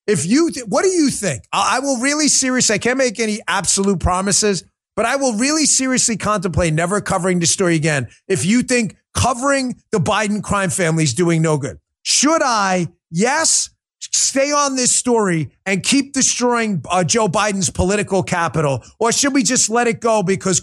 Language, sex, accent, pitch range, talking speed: English, male, American, 165-235 Hz, 185 wpm